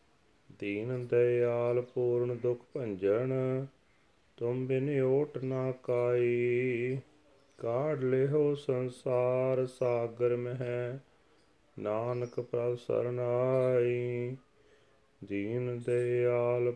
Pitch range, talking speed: 110-130 Hz, 60 wpm